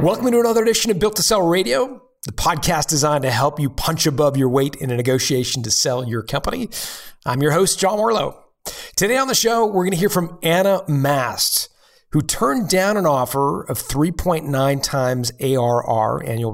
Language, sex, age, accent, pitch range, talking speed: English, male, 40-59, American, 130-175 Hz, 190 wpm